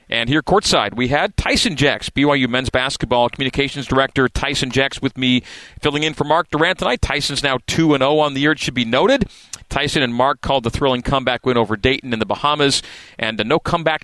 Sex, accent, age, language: male, American, 40-59, English